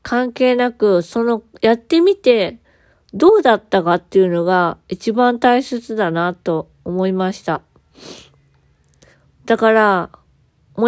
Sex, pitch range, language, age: female, 175-235 Hz, Japanese, 20-39